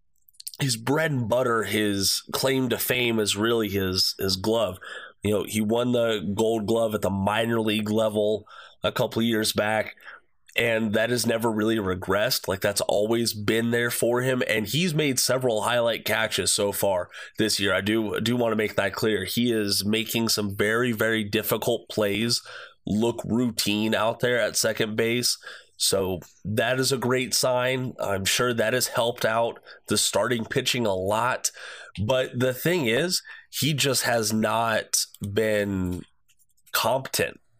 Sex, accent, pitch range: male, American, 105-120 Hz